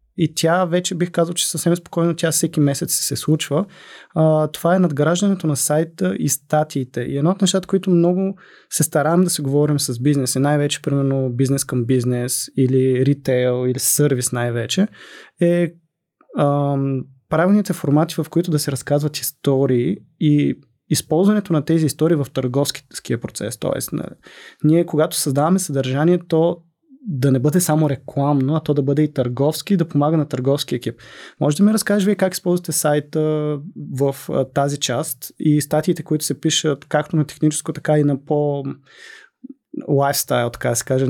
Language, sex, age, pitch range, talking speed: Bulgarian, male, 20-39, 135-165 Hz, 160 wpm